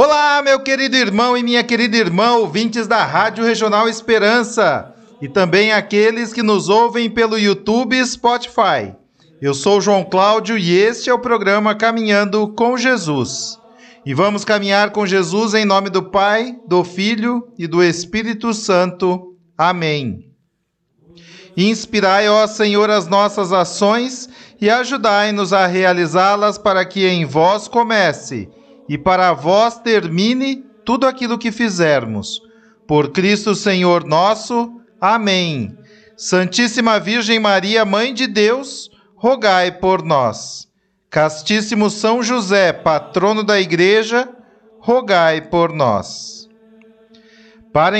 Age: 40-59